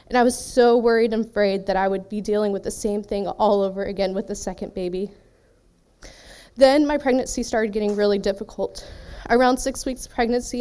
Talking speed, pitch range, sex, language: 190 wpm, 205-250 Hz, female, English